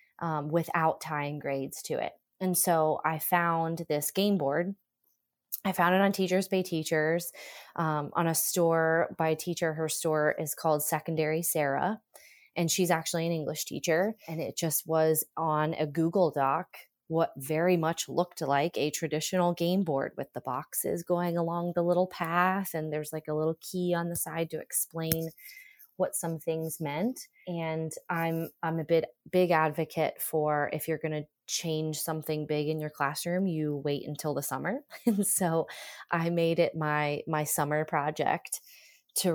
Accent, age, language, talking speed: American, 20-39, English, 170 wpm